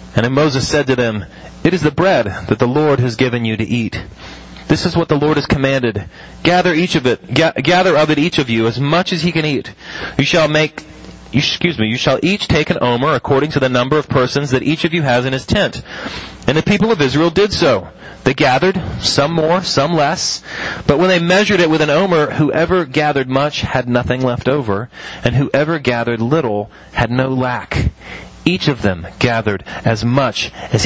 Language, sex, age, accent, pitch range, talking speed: English, male, 30-49, American, 125-165 Hz, 210 wpm